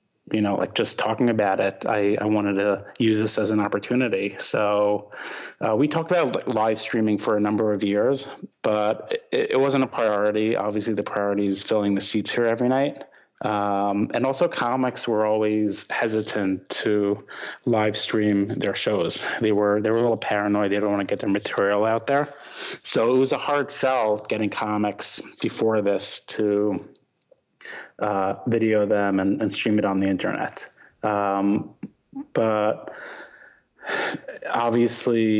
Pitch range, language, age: 100-115 Hz, English, 30-49